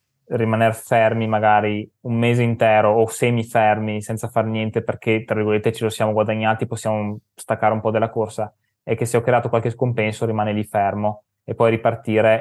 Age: 20-39